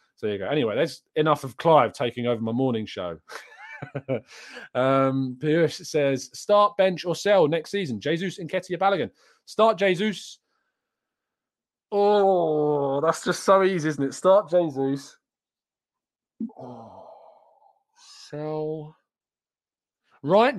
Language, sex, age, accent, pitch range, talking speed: English, male, 20-39, British, 125-175 Hz, 115 wpm